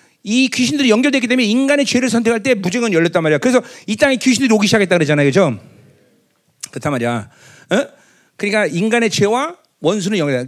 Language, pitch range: Korean, 145-245 Hz